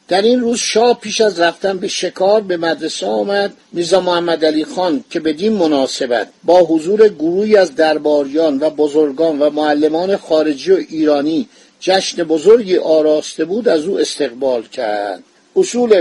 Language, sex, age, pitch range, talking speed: Persian, male, 50-69, 165-225 Hz, 145 wpm